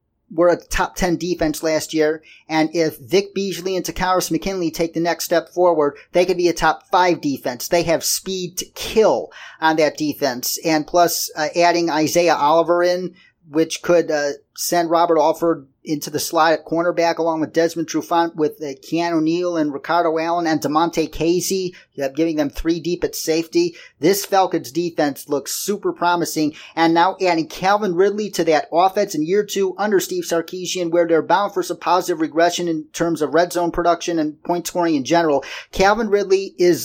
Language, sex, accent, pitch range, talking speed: English, male, American, 155-175 Hz, 180 wpm